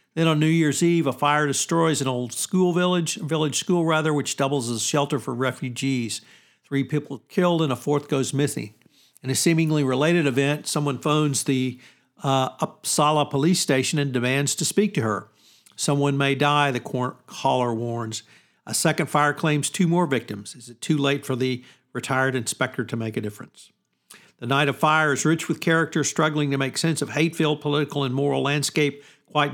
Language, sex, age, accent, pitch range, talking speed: English, male, 50-69, American, 130-155 Hz, 185 wpm